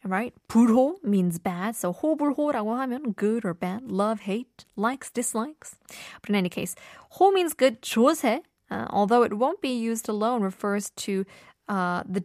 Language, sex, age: Korean, female, 20-39